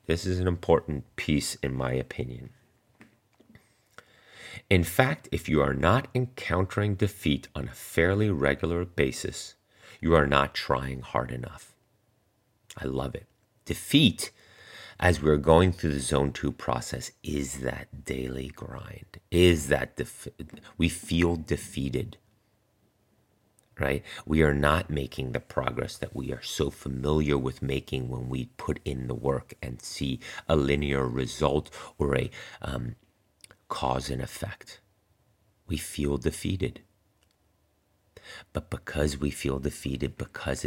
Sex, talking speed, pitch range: male, 130 wpm, 70-95 Hz